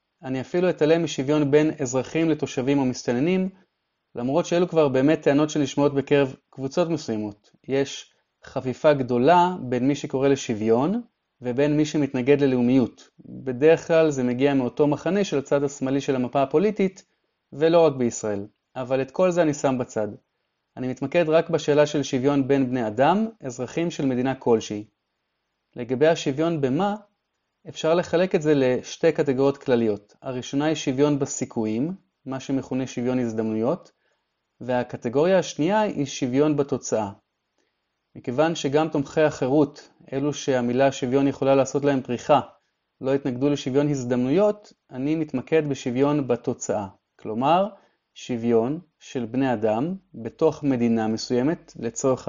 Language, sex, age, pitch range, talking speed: Hebrew, male, 30-49, 125-155 Hz, 130 wpm